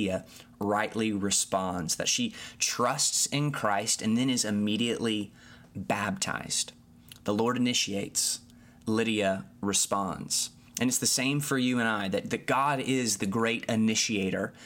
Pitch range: 100-125 Hz